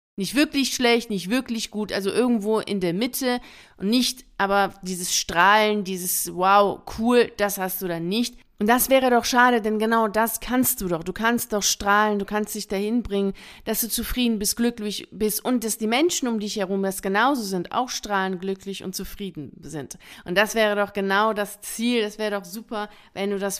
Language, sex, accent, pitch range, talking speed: German, female, German, 190-230 Hz, 205 wpm